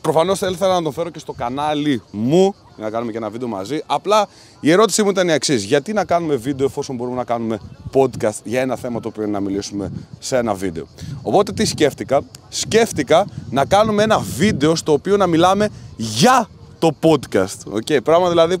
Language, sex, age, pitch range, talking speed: Greek, male, 30-49, 120-175 Hz, 200 wpm